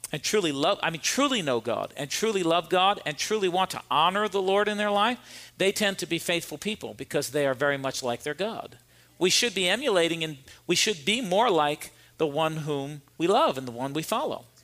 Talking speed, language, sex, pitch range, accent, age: 230 wpm, English, male, 150-195 Hz, American, 50-69